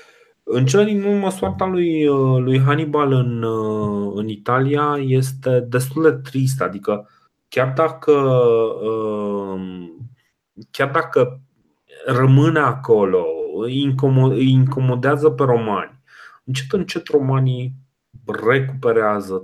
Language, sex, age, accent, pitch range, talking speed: Romanian, male, 30-49, native, 95-130 Hz, 95 wpm